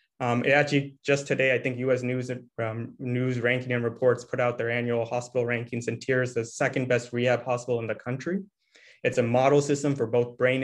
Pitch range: 120-135 Hz